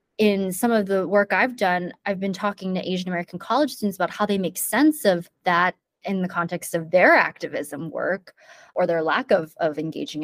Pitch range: 175-210 Hz